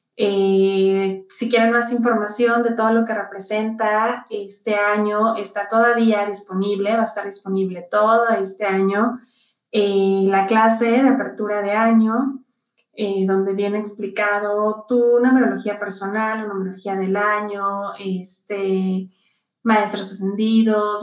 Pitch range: 200-235 Hz